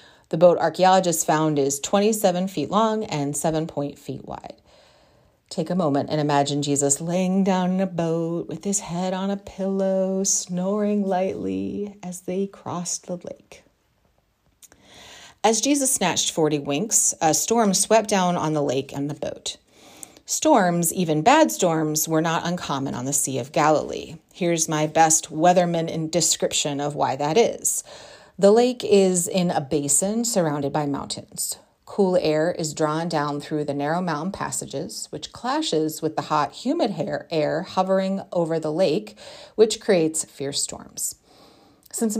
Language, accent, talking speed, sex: English, American, 155 wpm, female